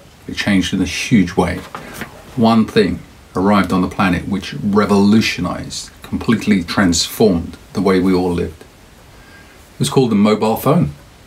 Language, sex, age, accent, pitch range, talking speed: English, male, 40-59, British, 90-135 Hz, 140 wpm